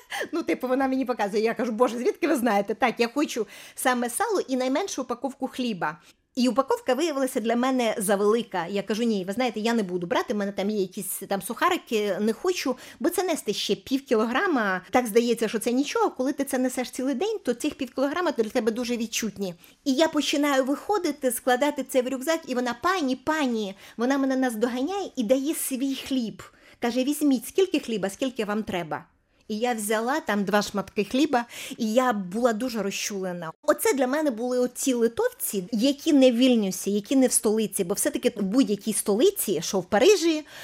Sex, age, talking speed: female, 30-49, 190 wpm